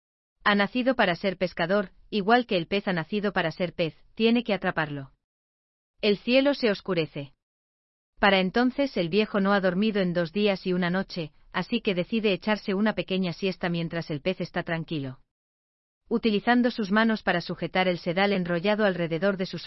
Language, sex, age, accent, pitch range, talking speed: Spanish, female, 40-59, Spanish, 165-210 Hz, 175 wpm